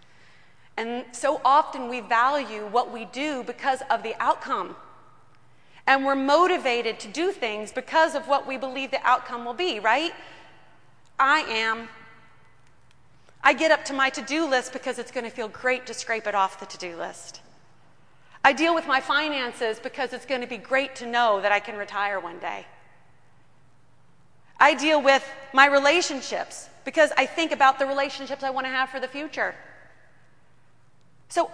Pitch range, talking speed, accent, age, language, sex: 230-285 Hz, 165 wpm, American, 30-49, English, female